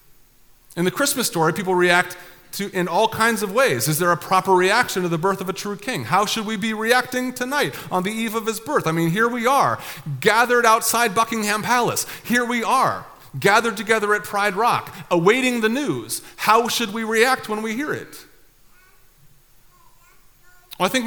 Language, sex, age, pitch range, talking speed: English, male, 40-59, 145-210 Hz, 190 wpm